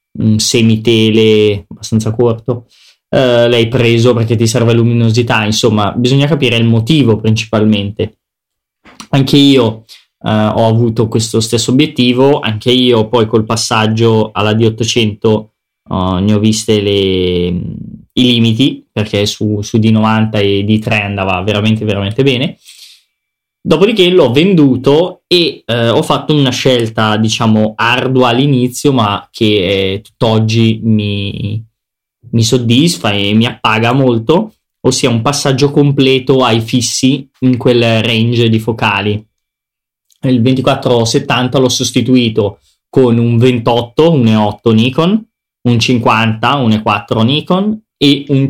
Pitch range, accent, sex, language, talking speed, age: 110-130 Hz, native, male, Italian, 120 wpm, 20-39